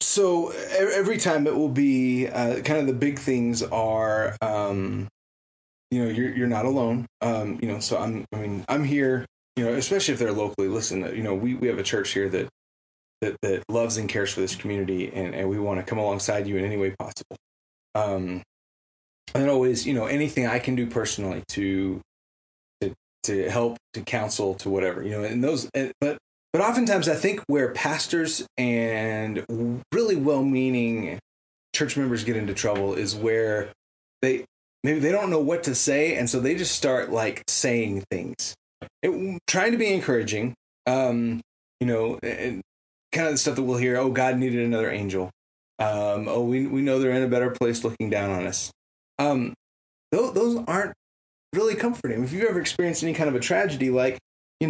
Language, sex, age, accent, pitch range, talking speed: English, male, 20-39, American, 105-135 Hz, 185 wpm